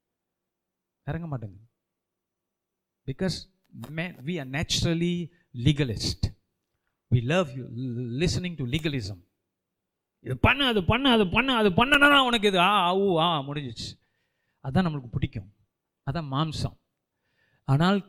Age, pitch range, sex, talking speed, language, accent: 50-69, 125-180 Hz, male, 145 wpm, Tamil, native